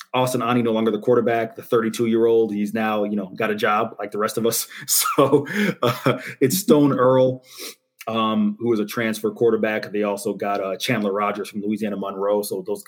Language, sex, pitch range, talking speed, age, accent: English, male, 105-130 Hz, 195 wpm, 30-49, American